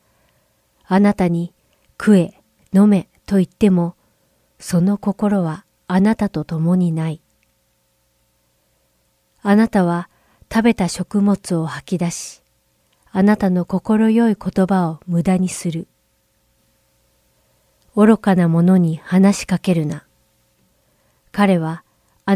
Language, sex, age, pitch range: Japanese, female, 40-59, 150-200 Hz